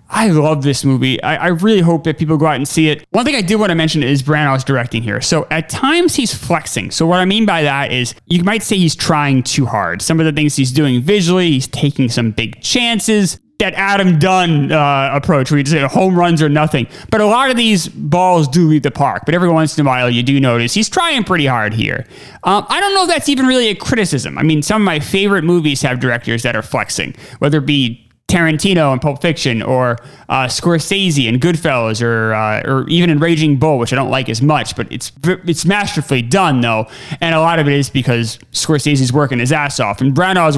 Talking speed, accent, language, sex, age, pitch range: 235 wpm, American, English, male, 30-49, 130-180 Hz